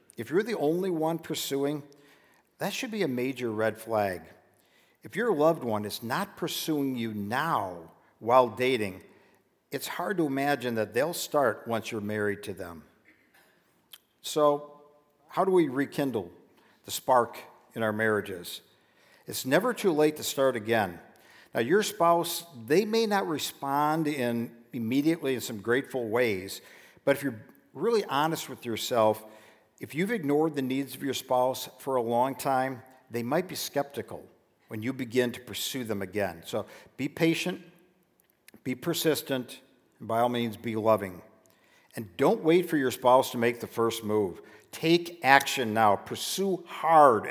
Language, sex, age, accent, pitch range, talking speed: English, male, 50-69, American, 115-155 Hz, 155 wpm